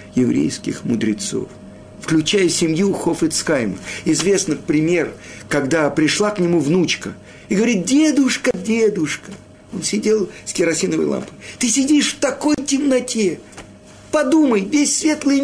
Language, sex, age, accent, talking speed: Russian, male, 50-69, native, 115 wpm